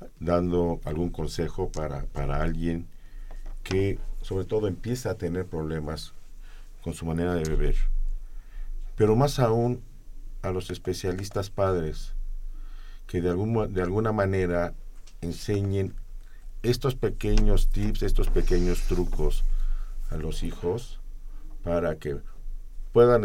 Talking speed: 110 wpm